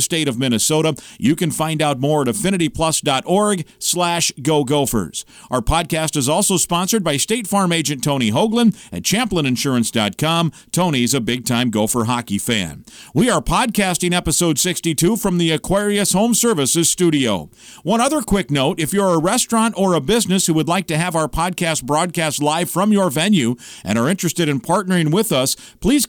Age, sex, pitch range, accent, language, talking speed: 50-69, male, 145-195 Hz, American, English, 170 wpm